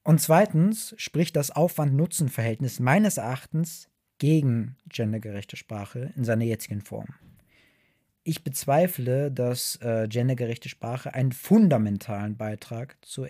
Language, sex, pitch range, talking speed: German, male, 115-140 Hz, 105 wpm